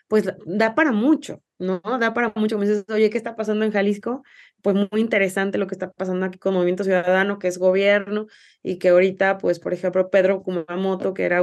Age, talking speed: 20-39, 210 wpm